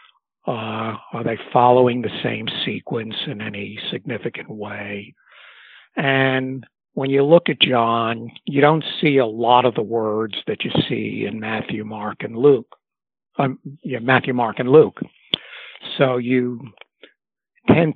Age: 60-79